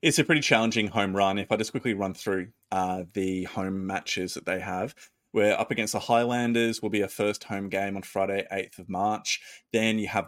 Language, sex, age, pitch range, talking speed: English, male, 20-39, 95-125 Hz, 220 wpm